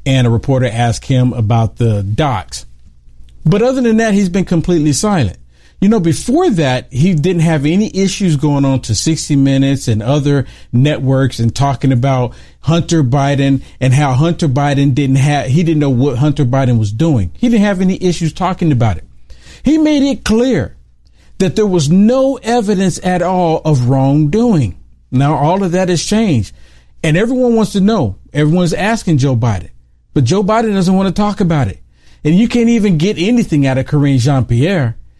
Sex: male